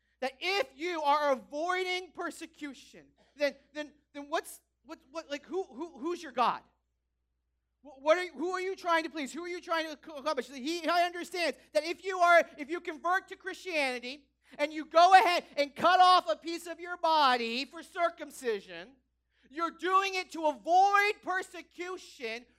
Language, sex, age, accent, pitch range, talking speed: English, male, 40-59, American, 210-330 Hz, 175 wpm